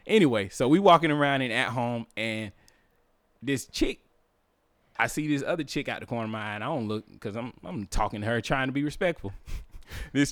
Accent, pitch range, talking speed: American, 105-140 Hz, 215 wpm